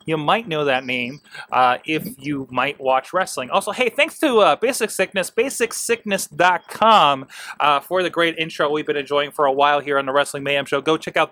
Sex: male